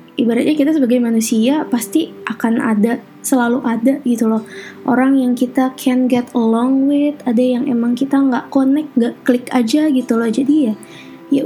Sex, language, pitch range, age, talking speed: female, Indonesian, 225-275 Hz, 20-39, 170 wpm